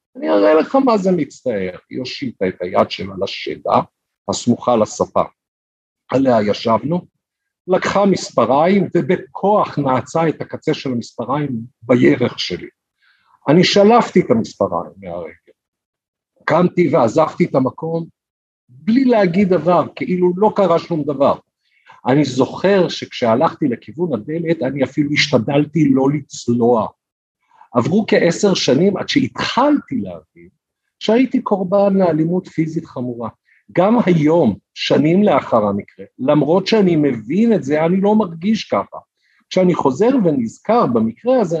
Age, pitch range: 50-69, 145-210 Hz